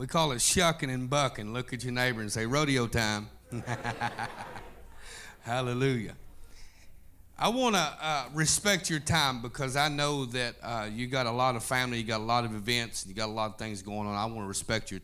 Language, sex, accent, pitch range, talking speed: English, male, American, 85-125 Hz, 210 wpm